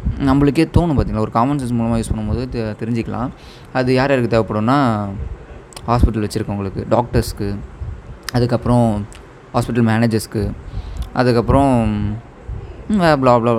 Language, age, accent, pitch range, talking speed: Tamil, 20-39, native, 110-140 Hz, 100 wpm